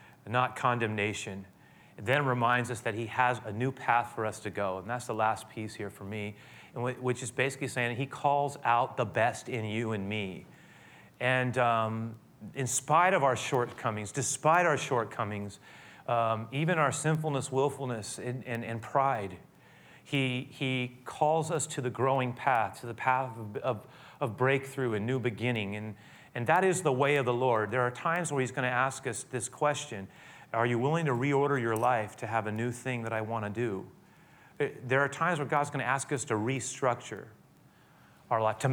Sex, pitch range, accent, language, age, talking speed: male, 115-155 Hz, American, English, 30-49, 195 wpm